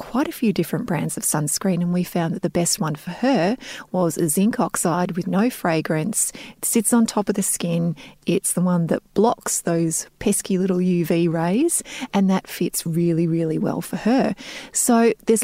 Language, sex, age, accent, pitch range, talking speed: English, female, 30-49, Australian, 170-220 Hz, 195 wpm